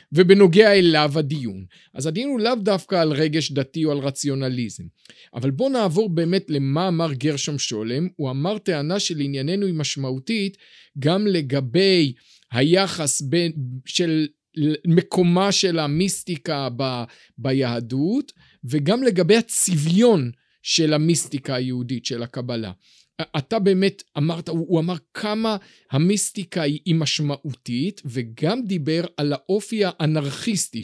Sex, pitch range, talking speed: male, 140-195 Hz, 120 wpm